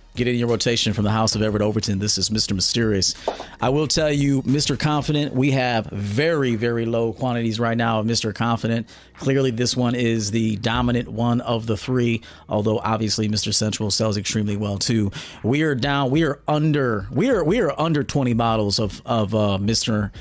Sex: male